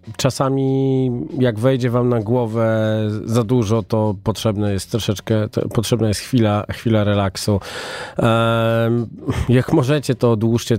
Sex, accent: male, native